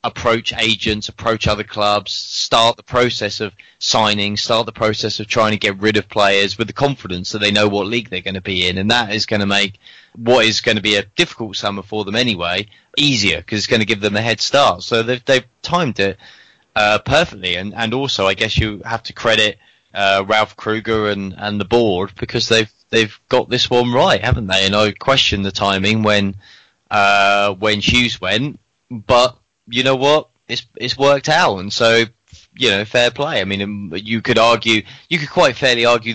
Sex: male